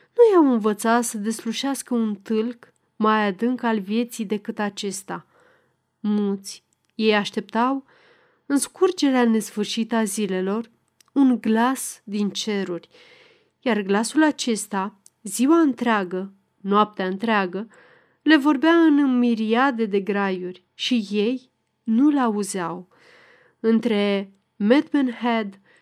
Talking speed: 100 wpm